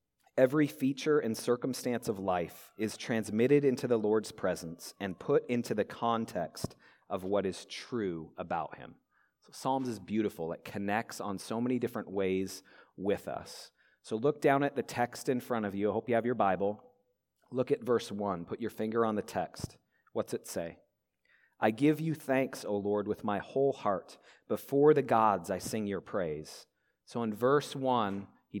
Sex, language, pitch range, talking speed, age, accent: male, English, 100-130 Hz, 180 wpm, 30-49, American